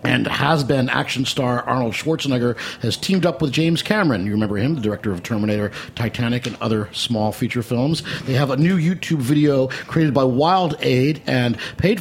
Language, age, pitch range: English, 50-69, 115-145 Hz